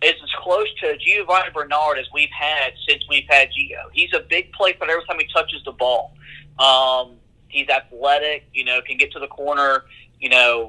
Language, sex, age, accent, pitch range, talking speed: English, male, 30-49, American, 135-160 Hz, 200 wpm